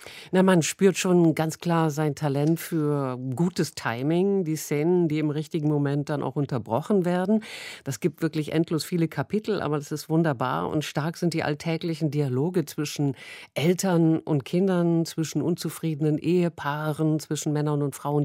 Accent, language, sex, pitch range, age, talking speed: German, German, female, 140-165 Hz, 50-69, 160 wpm